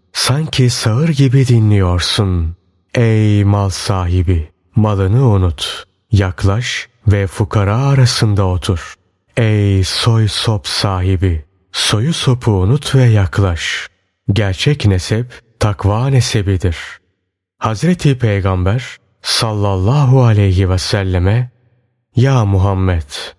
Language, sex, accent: Turkish, male, native